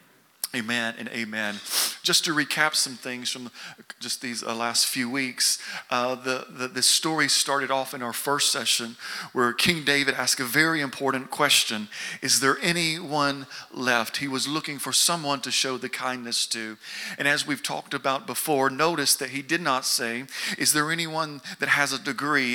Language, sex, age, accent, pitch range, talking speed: English, male, 40-59, American, 130-155 Hz, 175 wpm